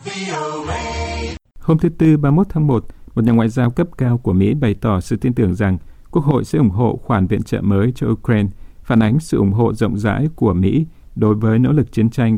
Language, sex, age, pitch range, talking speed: Vietnamese, male, 50-69, 105-130 Hz, 225 wpm